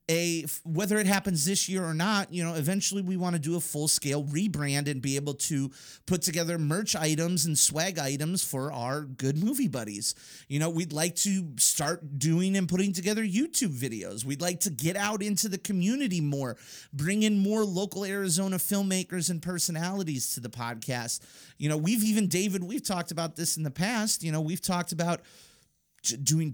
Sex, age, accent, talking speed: male, 30-49, American, 190 wpm